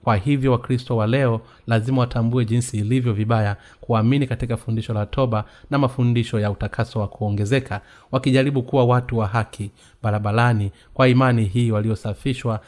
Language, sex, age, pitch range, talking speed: Swahili, male, 30-49, 105-130 Hz, 145 wpm